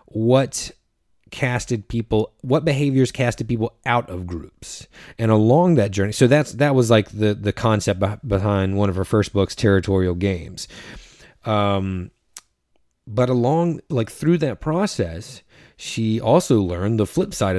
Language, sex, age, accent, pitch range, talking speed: English, male, 30-49, American, 100-135 Hz, 145 wpm